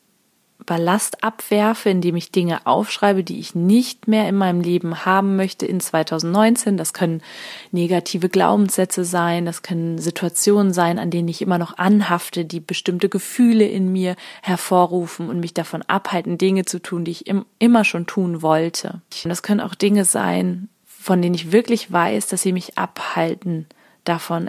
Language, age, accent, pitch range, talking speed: German, 30-49, German, 170-200 Hz, 165 wpm